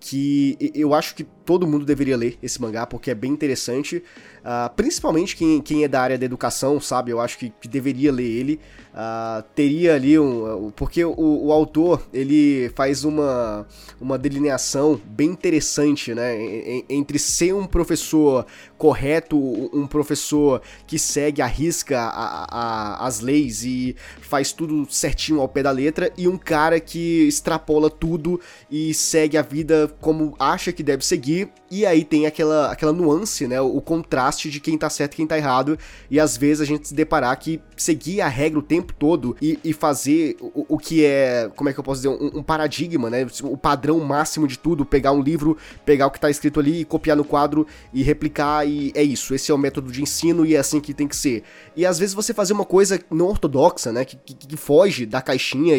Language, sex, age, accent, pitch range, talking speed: Portuguese, male, 20-39, Brazilian, 135-160 Hz, 195 wpm